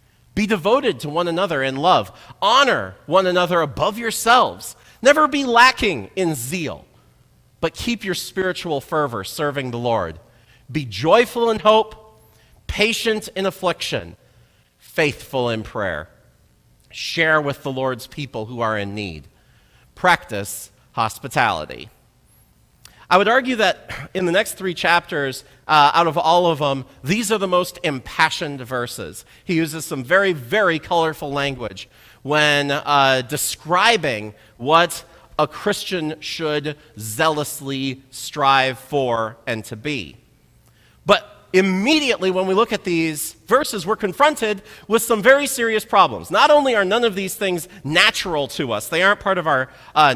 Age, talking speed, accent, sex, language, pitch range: 40-59, 140 wpm, American, male, English, 140-215 Hz